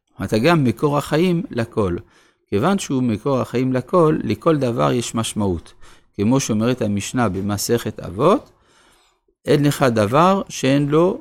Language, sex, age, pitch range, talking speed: Hebrew, male, 50-69, 105-145 Hz, 130 wpm